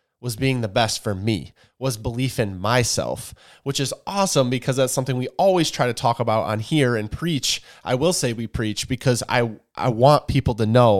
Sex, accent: male, American